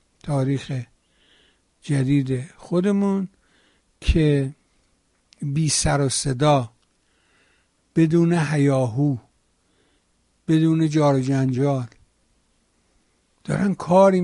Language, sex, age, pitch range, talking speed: Persian, male, 60-79, 130-165 Hz, 65 wpm